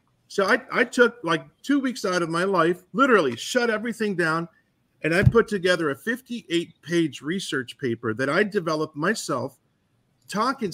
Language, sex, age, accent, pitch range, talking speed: English, male, 50-69, American, 155-215 Hz, 155 wpm